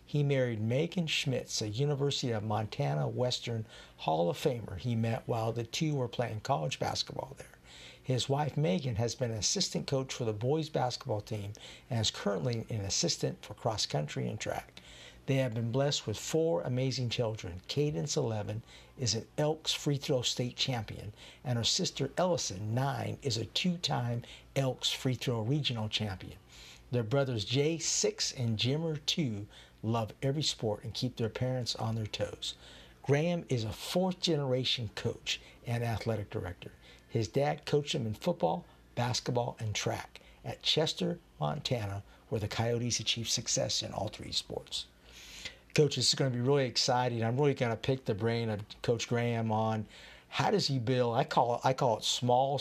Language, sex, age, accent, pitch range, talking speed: English, male, 60-79, American, 110-140 Hz, 170 wpm